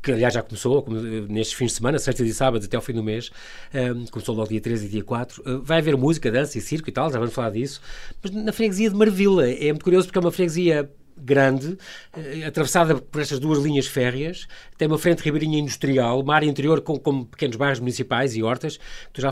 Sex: male